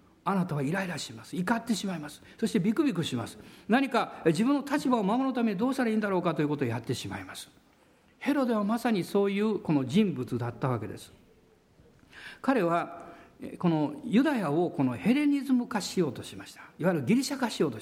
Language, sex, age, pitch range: Japanese, male, 50-69, 155-250 Hz